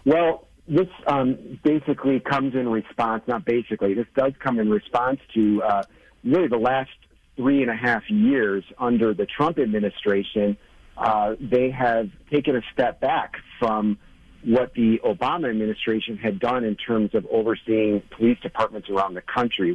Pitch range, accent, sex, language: 110-125 Hz, American, male, English